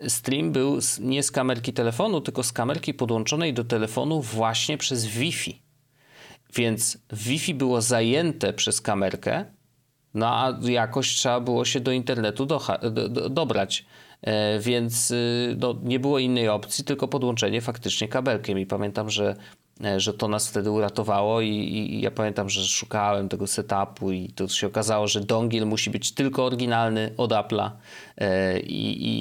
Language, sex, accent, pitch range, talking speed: Polish, male, native, 105-130 Hz, 150 wpm